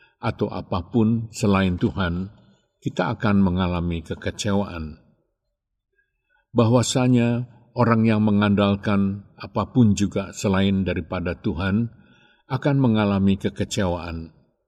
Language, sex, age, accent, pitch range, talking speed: Indonesian, male, 50-69, native, 95-120 Hz, 80 wpm